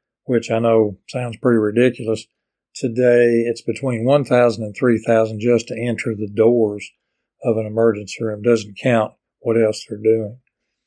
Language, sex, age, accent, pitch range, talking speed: English, male, 60-79, American, 115-130 Hz, 150 wpm